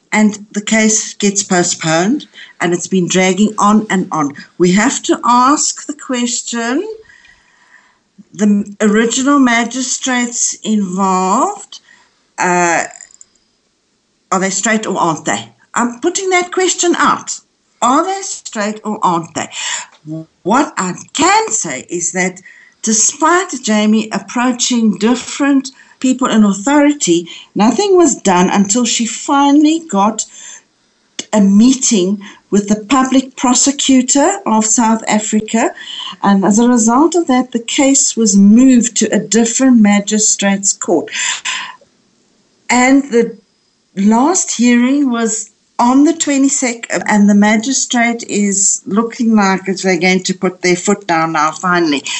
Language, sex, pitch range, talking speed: English, female, 200-260 Hz, 125 wpm